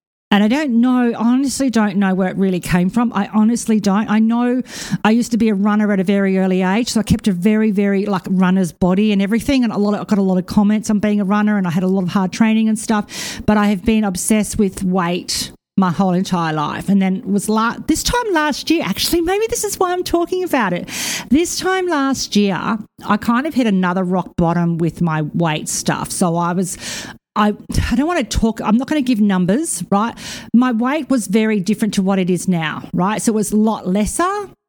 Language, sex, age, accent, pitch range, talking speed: English, female, 40-59, Australian, 190-235 Hz, 240 wpm